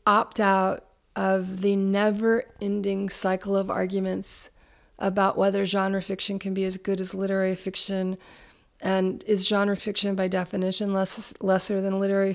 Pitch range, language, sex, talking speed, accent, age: 185-210 Hz, English, female, 135 wpm, American, 30-49